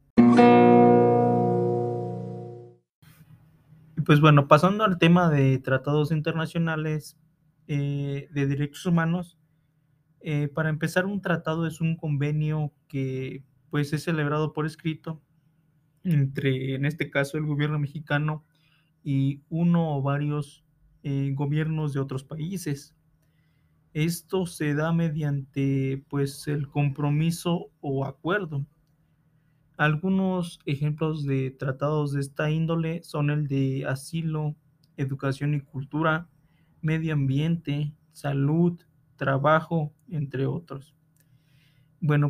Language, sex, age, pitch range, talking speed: Spanish, male, 30-49, 145-160 Hz, 100 wpm